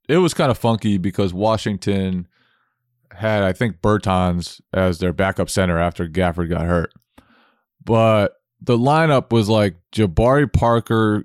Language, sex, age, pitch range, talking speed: English, male, 20-39, 95-120 Hz, 140 wpm